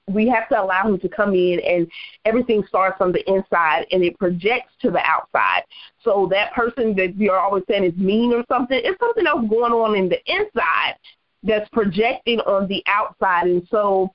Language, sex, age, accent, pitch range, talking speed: English, female, 30-49, American, 190-235 Hz, 195 wpm